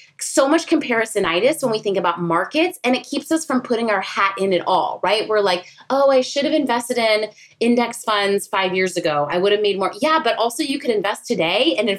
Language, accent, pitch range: English, American, 205-290 Hz